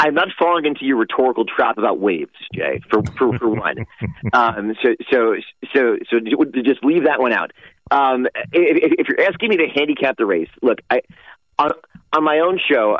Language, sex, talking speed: English, male, 190 wpm